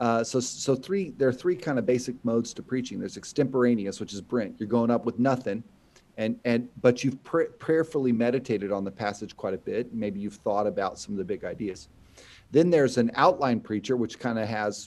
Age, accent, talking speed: 40-59, American, 220 wpm